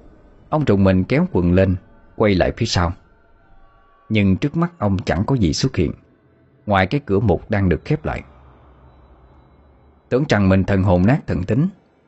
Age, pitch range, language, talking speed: 20-39, 85-120 Hz, Vietnamese, 175 wpm